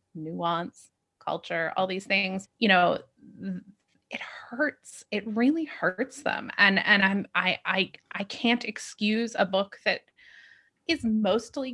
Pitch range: 170-220 Hz